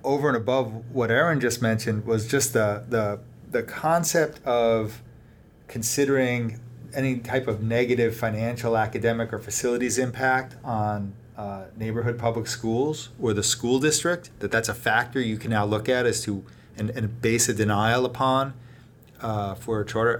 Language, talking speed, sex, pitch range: English, 160 wpm, male, 110-130 Hz